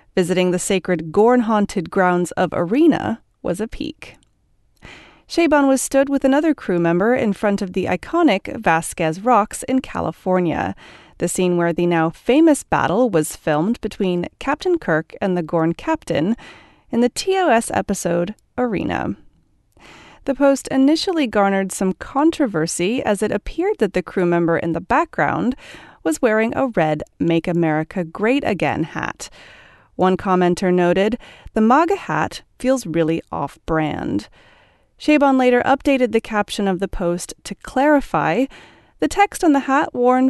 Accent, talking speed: American, 145 wpm